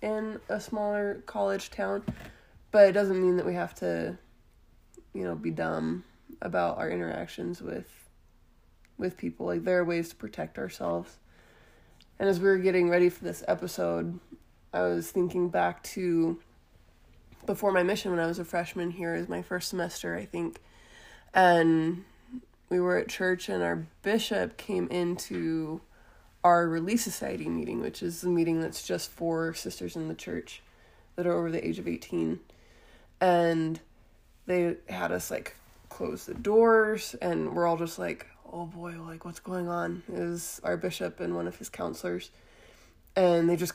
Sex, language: female, English